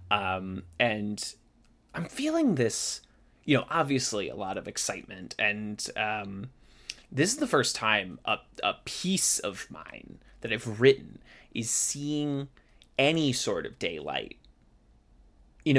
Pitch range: 105-135 Hz